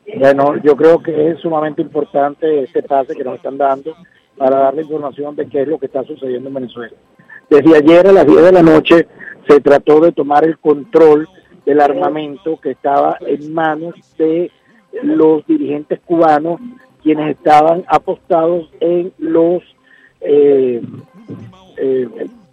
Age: 50-69